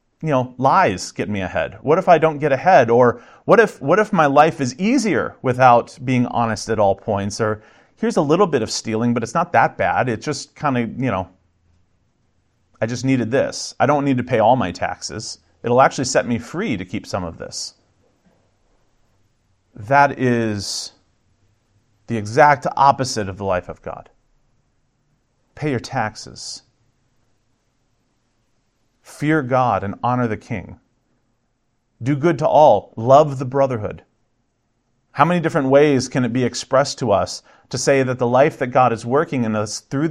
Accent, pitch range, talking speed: American, 110-135 Hz, 170 wpm